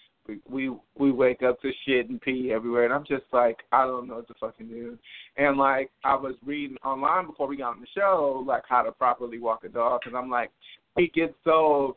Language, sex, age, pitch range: English, male, 20-39, 120-145 Hz